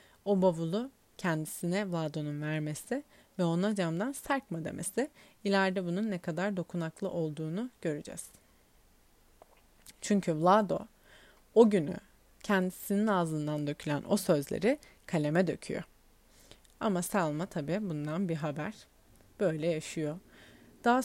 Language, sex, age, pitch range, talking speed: Turkish, female, 30-49, 160-225 Hz, 105 wpm